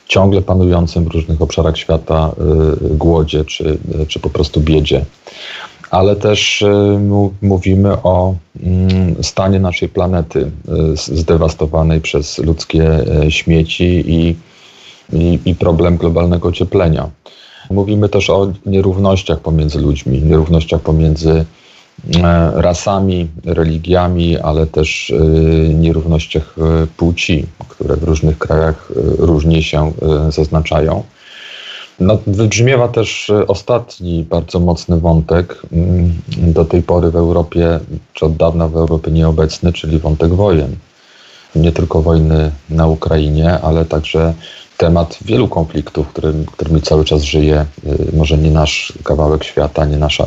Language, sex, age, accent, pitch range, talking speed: Polish, male, 40-59, native, 80-90 Hz, 110 wpm